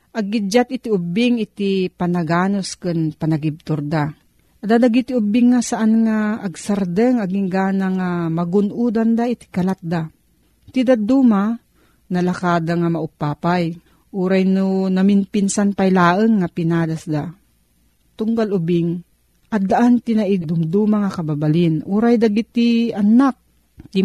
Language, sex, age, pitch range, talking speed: Filipino, female, 40-59, 170-220 Hz, 110 wpm